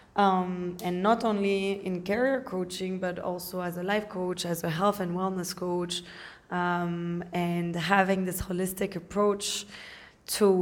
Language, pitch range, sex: English, 175-195 Hz, female